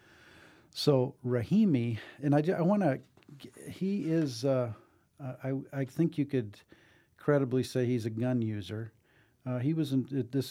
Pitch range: 110-130 Hz